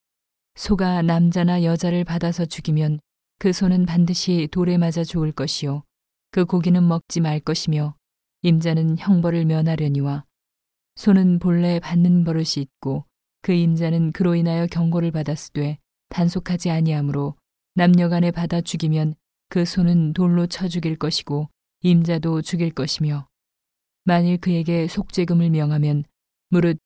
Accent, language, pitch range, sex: native, Korean, 155-175 Hz, female